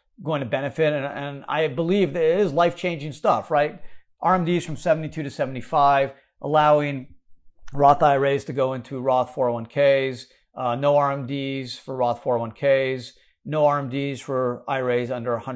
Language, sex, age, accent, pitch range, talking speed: English, male, 40-59, American, 120-145 Hz, 145 wpm